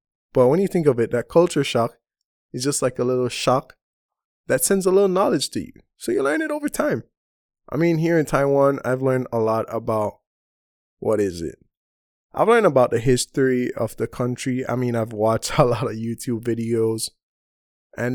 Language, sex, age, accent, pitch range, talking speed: English, male, 20-39, American, 115-150 Hz, 195 wpm